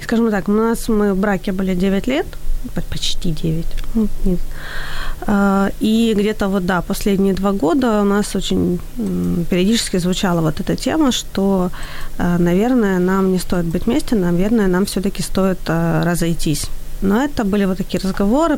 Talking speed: 150 wpm